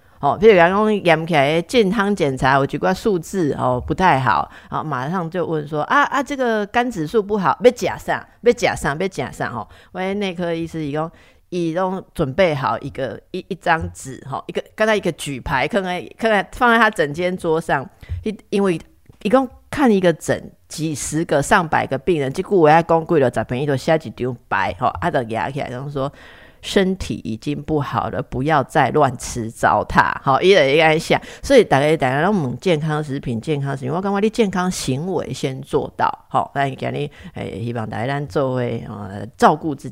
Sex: female